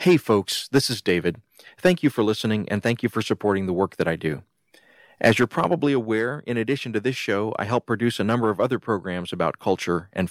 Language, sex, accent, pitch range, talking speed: English, male, American, 100-120 Hz, 225 wpm